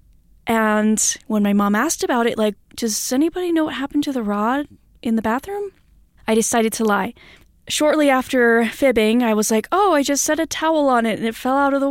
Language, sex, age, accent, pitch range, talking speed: English, female, 10-29, American, 210-245 Hz, 215 wpm